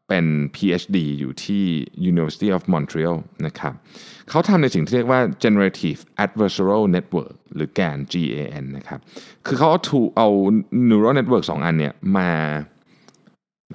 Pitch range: 80-125 Hz